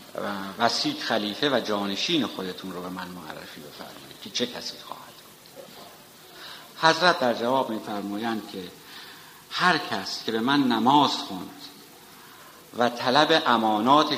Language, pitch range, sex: Persian, 100-130 Hz, male